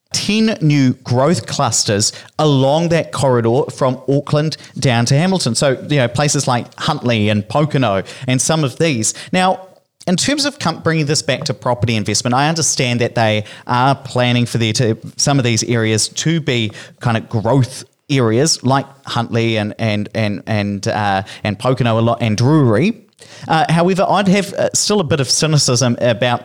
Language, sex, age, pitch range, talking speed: English, male, 30-49, 115-145 Hz, 175 wpm